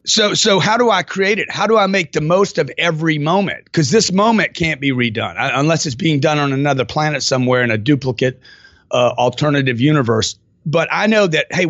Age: 40-59